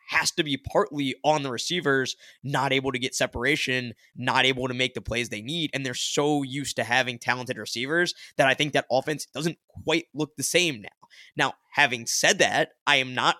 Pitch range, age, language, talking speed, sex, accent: 125-145 Hz, 20-39, English, 205 wpm, male, American